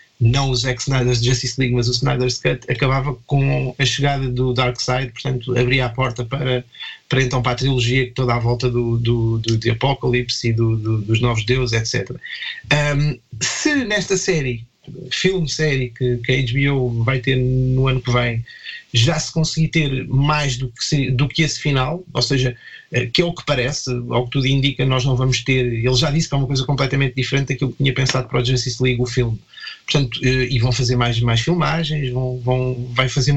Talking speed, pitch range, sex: 200 wpm, 125-150 Hz, male